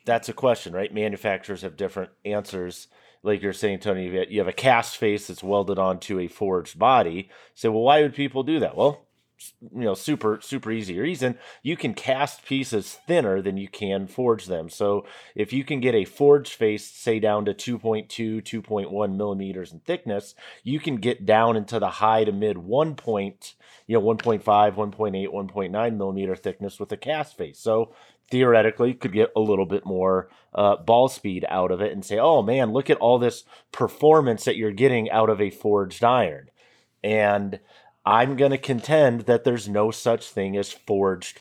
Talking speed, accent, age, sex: 180 wpm, American, 30-49, male